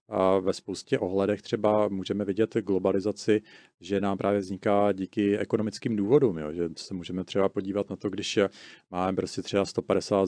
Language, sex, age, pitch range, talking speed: Czech, male, 40-59, 95-105 Hz, 165 wpm